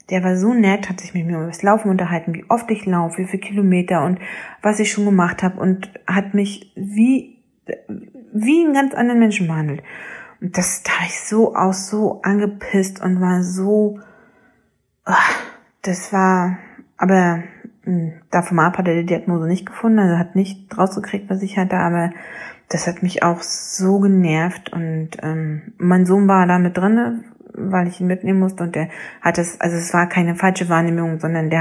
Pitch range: 165-200 Hz